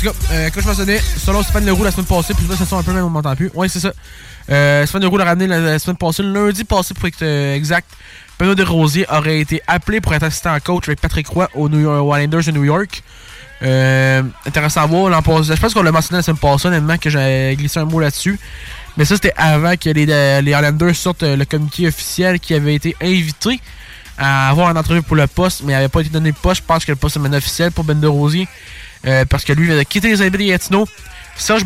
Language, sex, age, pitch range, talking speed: French, male, 20-39, 145-180 Hz, 260 wpm